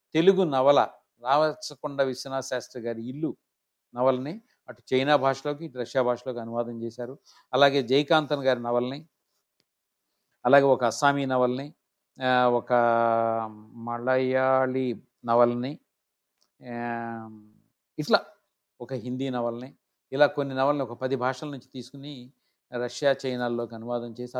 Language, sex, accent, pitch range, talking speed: Telugu, male, native, 120-140 Hz, 105 wpm